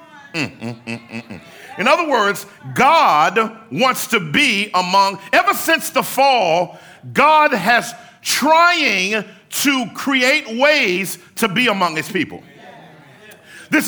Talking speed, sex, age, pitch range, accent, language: 125 wpm, male, 50-69, 195-280 Hz, American, English